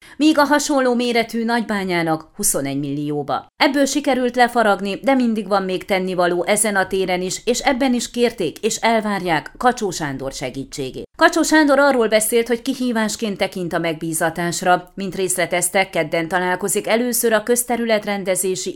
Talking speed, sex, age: 140 wpm, female, 30-49